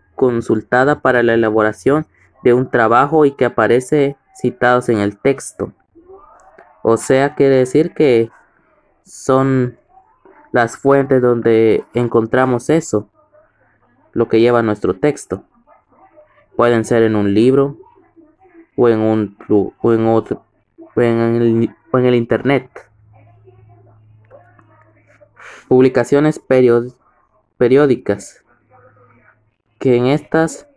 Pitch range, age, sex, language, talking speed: 110-135 Hz, 20-39, male, English, 105 wpm